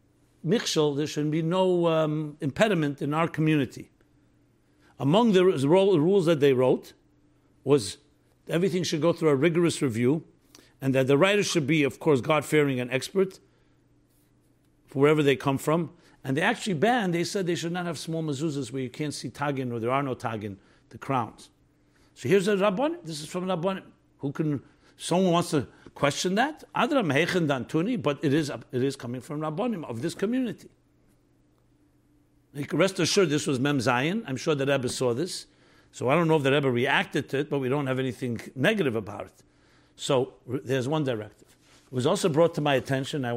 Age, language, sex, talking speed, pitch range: 60-79, English, male, 190 wpm, 130-170 Hz